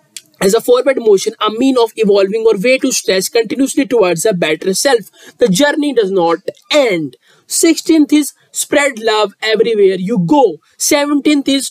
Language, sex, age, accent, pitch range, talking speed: English, male, 20-39, Indian, 215-275 Hz, 160 wpm